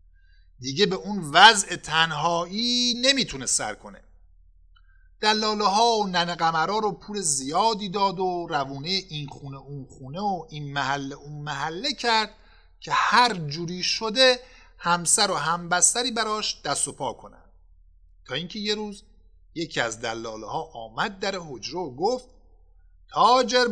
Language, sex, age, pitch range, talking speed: Persian, male, 50-69, 150-215 Hz, 140 wpm